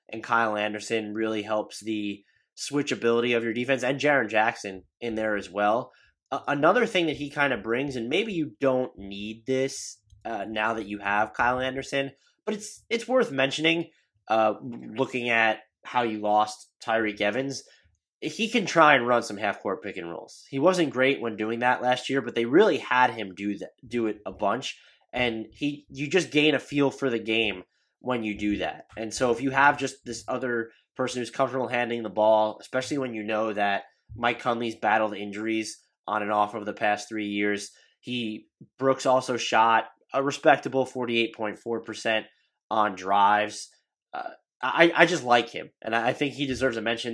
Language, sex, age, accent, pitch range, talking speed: English, male, 20-39, American, 110-135 Hz, 190 wpm